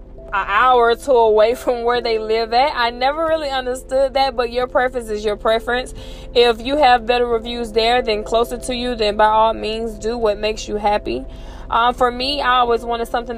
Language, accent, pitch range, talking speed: English, American, 220-250 Hz, 210 wpm